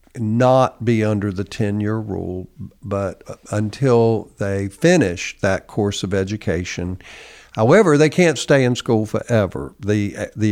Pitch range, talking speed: 95-115 Hz, 135 wpm